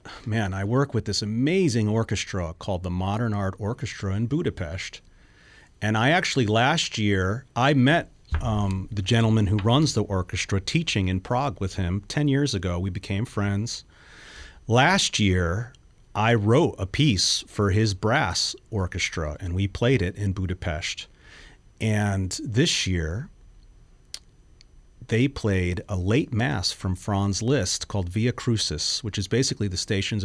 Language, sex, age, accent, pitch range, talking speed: English, male, 40-59, American, 95-120 Hz, 145 wpm